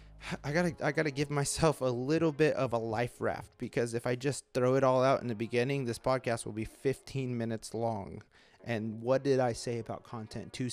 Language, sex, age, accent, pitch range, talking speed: English, male, 30-49, American, 120-155 Hz, 230 wpm